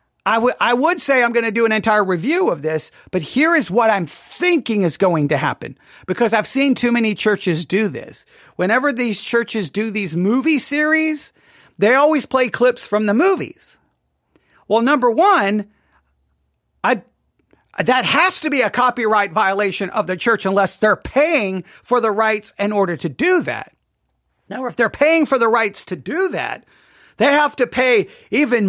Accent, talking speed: American, 180 wpm